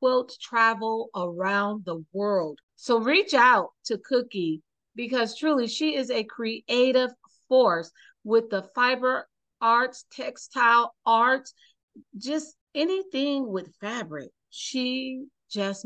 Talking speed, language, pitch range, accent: 105 wpm, English, 195-245 Hz, American